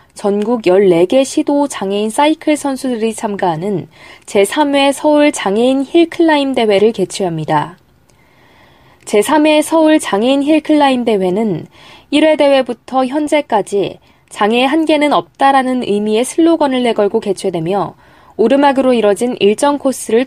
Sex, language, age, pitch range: female, Korean, 20-39, 205-280 Hz